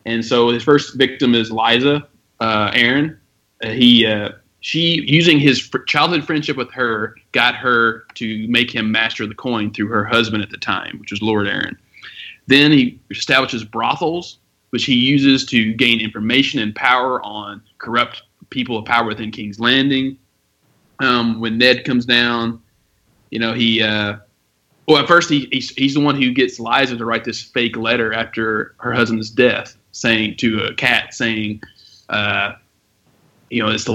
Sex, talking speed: male, 170 wpm